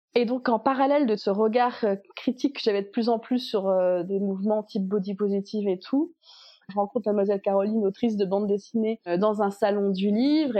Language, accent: French, French